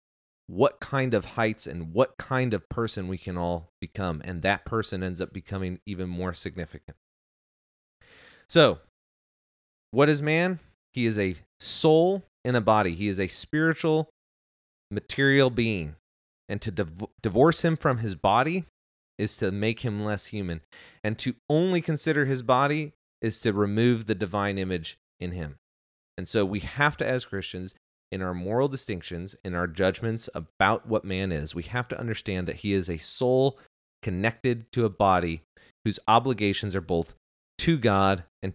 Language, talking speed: English, 160 wpm